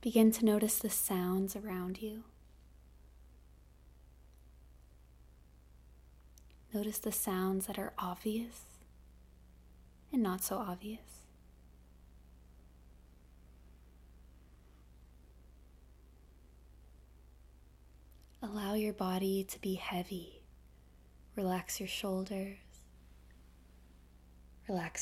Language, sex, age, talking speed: English, female, 20-39, 65 wpm